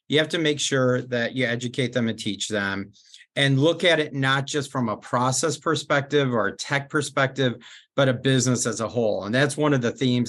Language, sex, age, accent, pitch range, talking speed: English, male, 40-59, American, 120-145 Hz, 220 wpm